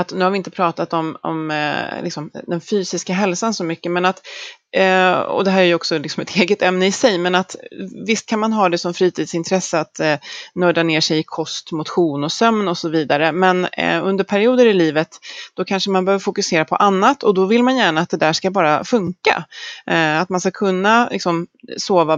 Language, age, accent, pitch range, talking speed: Swedish, 30-49, native, 160-205 Hz, 195 wpm